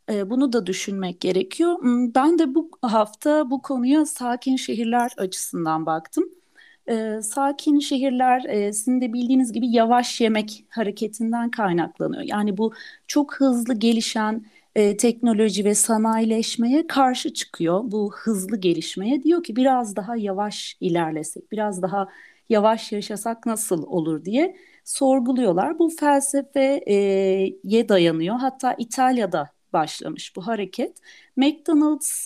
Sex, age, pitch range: female, 40-59, 205-270 Hz